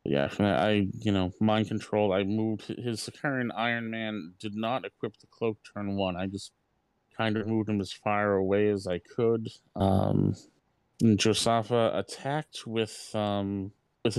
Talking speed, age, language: 160 wpm, 30-49, English